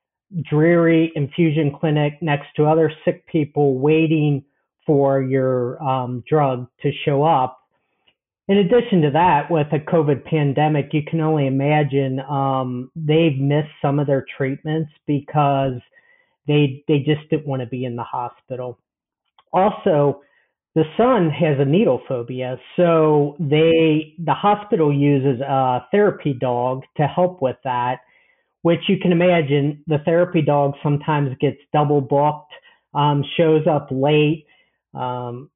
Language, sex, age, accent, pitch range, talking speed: English, male, 40-59, American, 140-165 Hz, 135 wpm